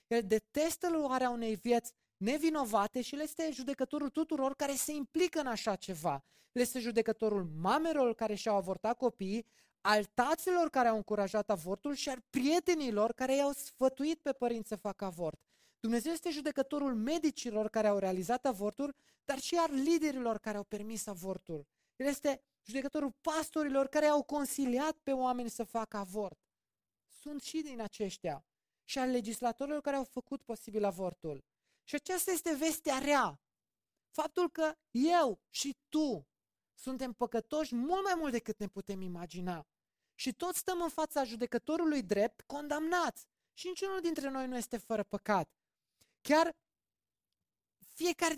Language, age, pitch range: Romanian, 20-39, 220-300 Hz